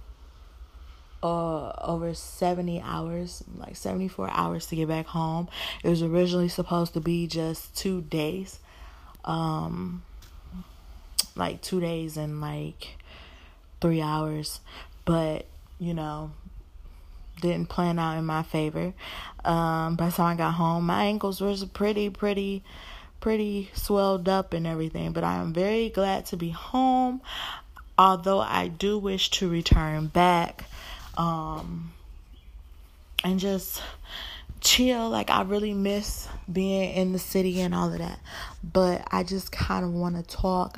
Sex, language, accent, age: female, English, American, 20-39